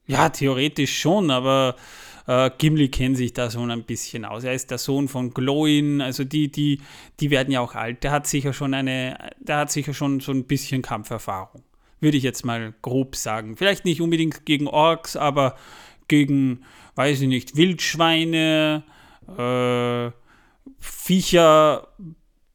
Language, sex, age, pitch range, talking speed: German, male, 30-49, 130-155 Hz, 155 wpm